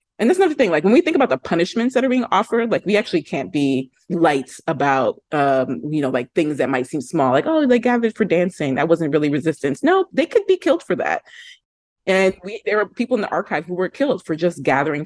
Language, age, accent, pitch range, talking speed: English, 30-49, American, 135-170 Hz, 245 wpm